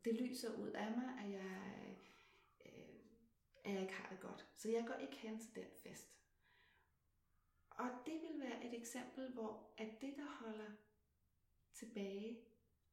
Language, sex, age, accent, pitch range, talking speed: Danish, female, 30-49, native, 215-245 Hz, 160 wpm